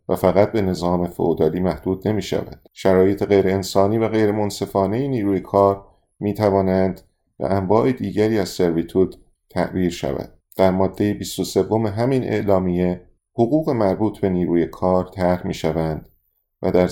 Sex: male